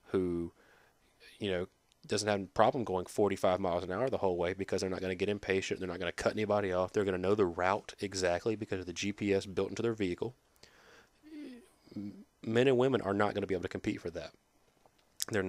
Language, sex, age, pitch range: English, male, 30-49, 95-110 Hz